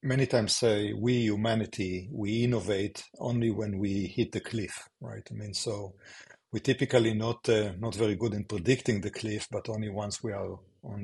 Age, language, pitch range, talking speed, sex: 50-69, English, 100-120 Hz, 185 wpm, male